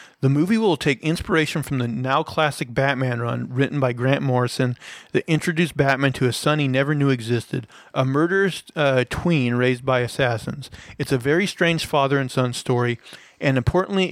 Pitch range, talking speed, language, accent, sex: 125-160 Hz, 180 wpm, English, American, male